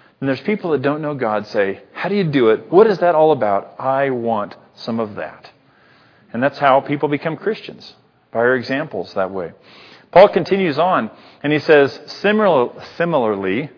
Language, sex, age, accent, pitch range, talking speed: English, male, 40-59, American, 115-155 Hz, 185 wpm